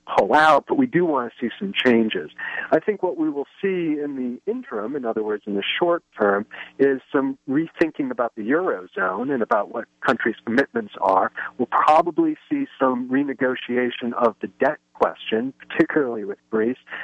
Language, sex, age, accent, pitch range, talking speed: English, male, 50-69, American, 115-175 Hz, 180 wpm